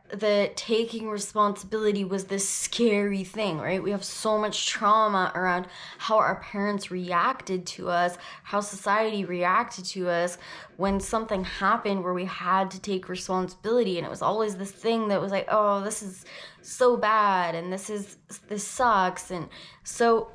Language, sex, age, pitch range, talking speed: English, female, 10-29, 190-220 Hz, 160 wpm